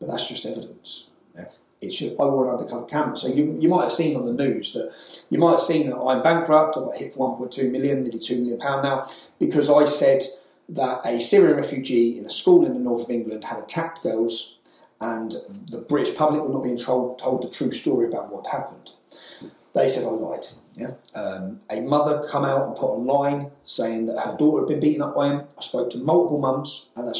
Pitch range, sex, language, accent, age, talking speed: 130-165 Hz, male, English, British, 30-49, 225 wpm